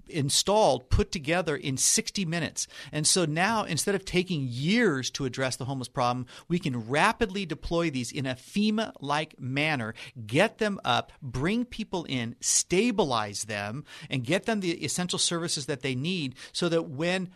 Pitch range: 145-195 Hz